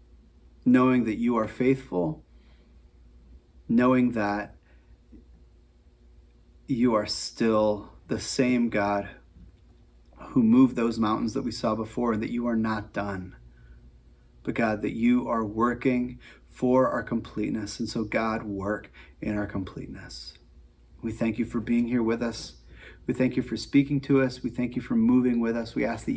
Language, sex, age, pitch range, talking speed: English, male, 30-49, 80-125 Hz, 155 wpm